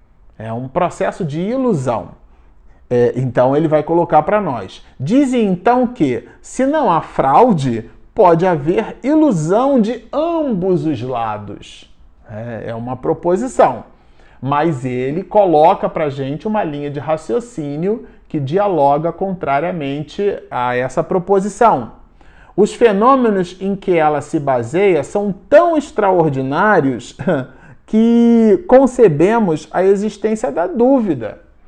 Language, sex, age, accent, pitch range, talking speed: Portuguese, male, 40-59, Brazilian, 140-220 Hz, 115 wpm